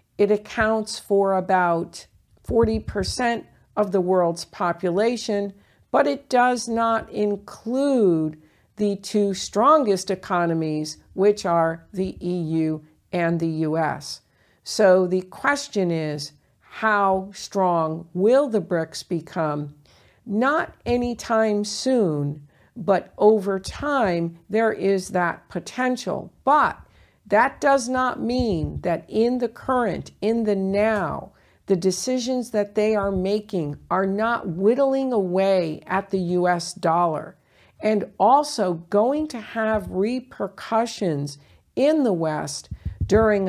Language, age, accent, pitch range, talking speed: English, 50-69, American, 175-225 Hz, 110 wpm